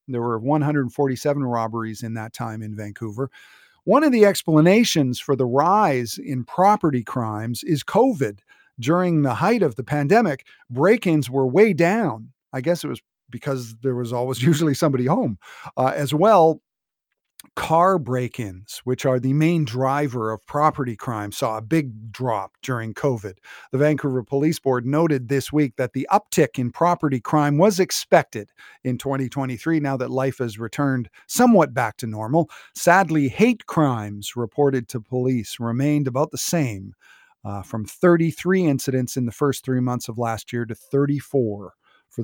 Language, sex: English, male